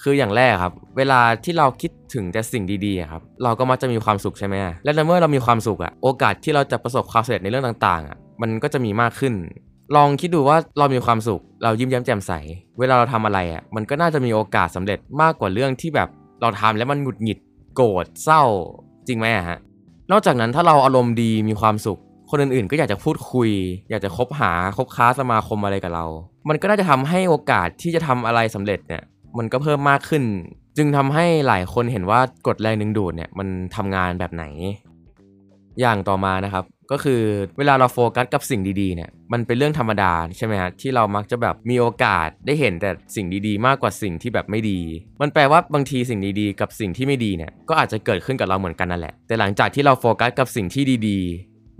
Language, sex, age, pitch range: Thai, male, 20-39, 100-130 Hz